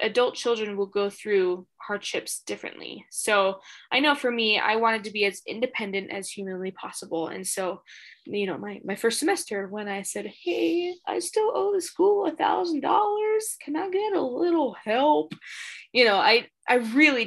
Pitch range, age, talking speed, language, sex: 210-295 Hz, 10-29, 180 wpm, English, female